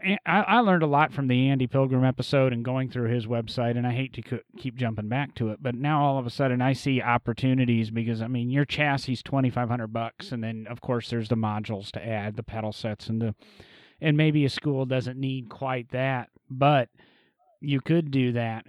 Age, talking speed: 30-49, 215 wpm